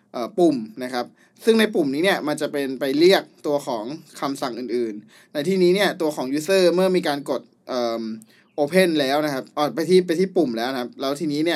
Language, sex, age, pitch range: Thai, male, 20-39, 135-180 Hz